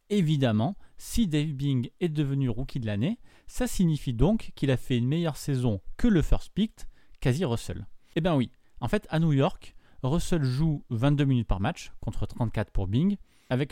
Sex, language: male, French